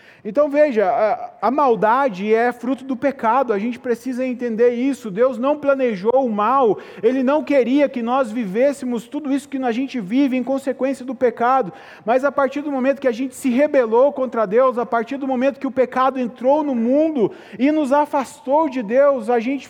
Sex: male